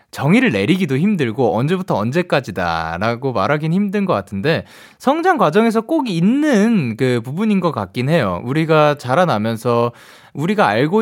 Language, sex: Korean, male